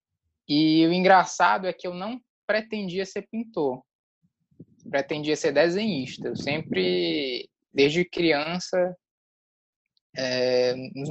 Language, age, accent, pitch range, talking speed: Portuguese, 20-39, Brazilian, 135-180 Hz, 105 wpm